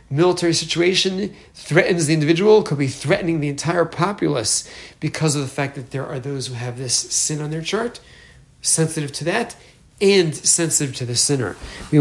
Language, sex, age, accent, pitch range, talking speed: English, male, 40-59, American, 135-170 Hz, 175 wpm